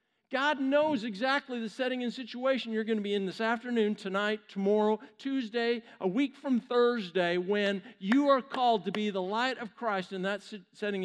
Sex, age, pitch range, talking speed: male, 50-69, 205-255 Hz, 185 wpm